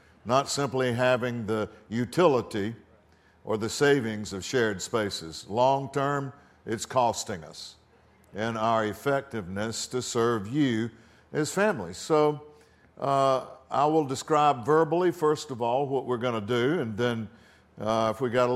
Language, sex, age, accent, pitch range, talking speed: English, male, 60-79, American, 105-140 Hz, 145 wpm